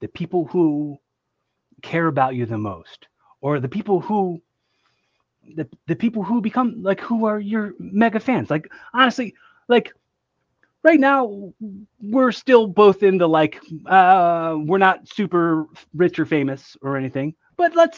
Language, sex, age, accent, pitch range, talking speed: English, male, 30-49, American, 155-210 Hz, 145 wpm